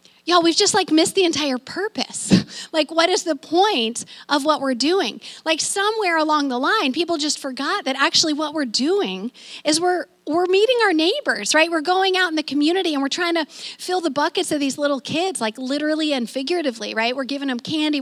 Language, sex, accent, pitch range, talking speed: English, female, American, 235-310 Hz, 210 wpm